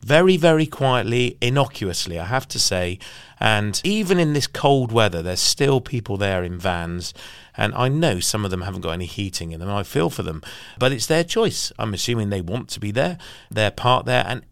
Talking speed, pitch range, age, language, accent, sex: 210 wpm, 100-135 Hz, 40-59, English, British, male